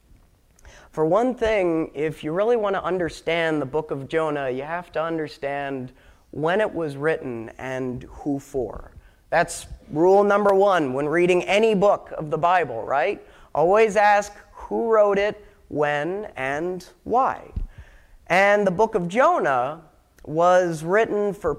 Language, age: English, 30-49